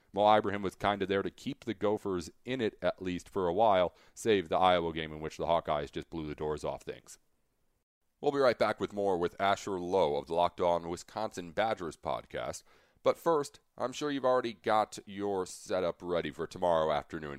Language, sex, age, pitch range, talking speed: English, male, 30-49, 90-120 Hz, 205 wpm